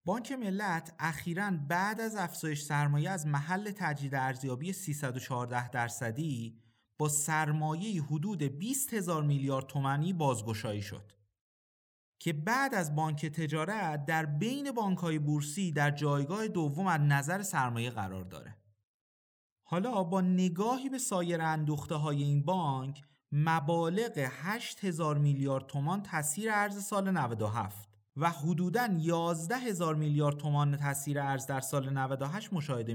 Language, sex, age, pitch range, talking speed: Persian, male, 30-49, 135-190 Hz, 125 wpm